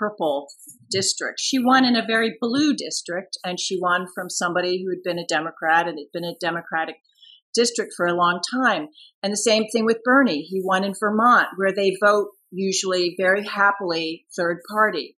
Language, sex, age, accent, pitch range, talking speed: English, female, 40-59, American, 170-215 Hz, 185 wpm